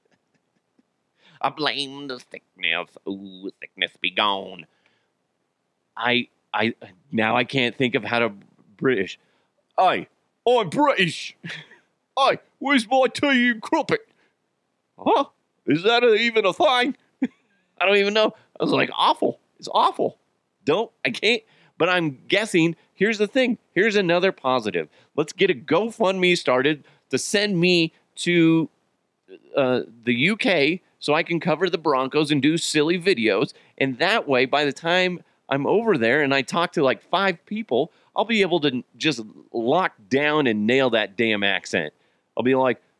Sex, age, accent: male, 40-59, American